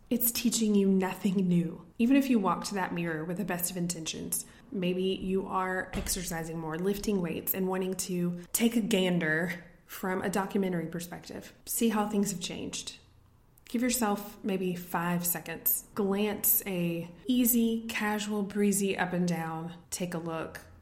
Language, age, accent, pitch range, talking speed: English, 20-39, American, 170-205 Hz, 160 wpm